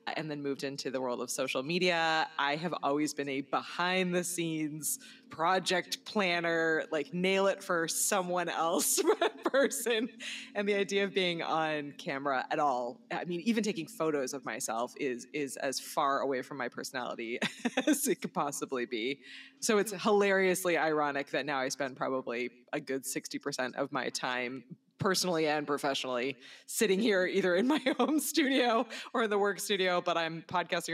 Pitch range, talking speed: 140-190 Hz, 160 wpm